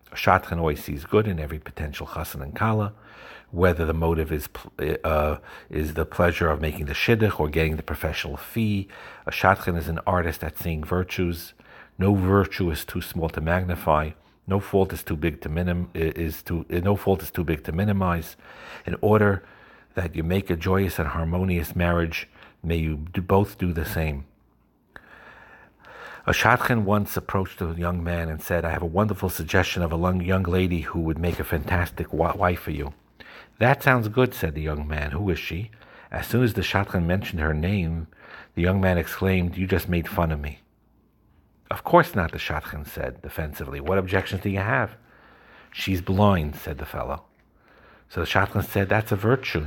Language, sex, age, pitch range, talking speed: English, male, 60-79, 80-95 Hz, 185 wpm